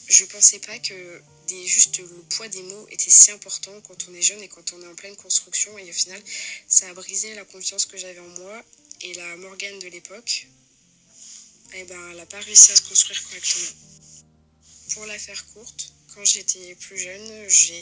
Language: French